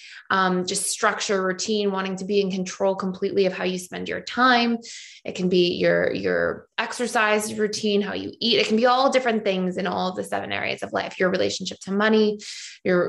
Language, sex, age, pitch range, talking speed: English, female, 20-39, 185-215 Hz, 205 wpm